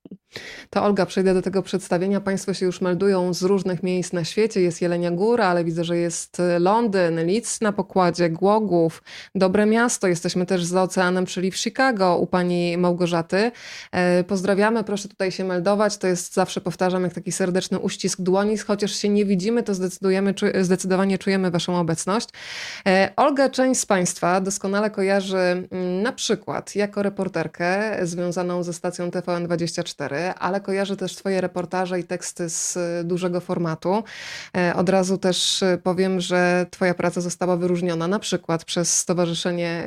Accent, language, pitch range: native, Polish, 175-195 Hz